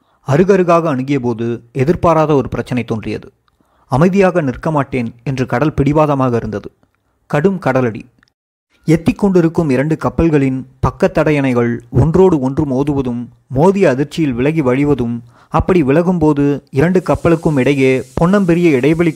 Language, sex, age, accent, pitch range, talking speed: Tamil, male, 30-49, native, 130-170 Hz, 105 wpm